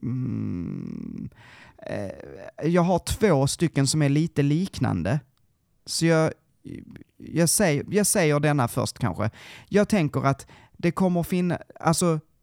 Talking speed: 130 wpm